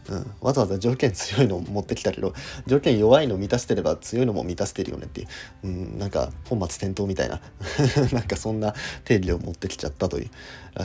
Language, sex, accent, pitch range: Japanese, male, native, 80-110 Hz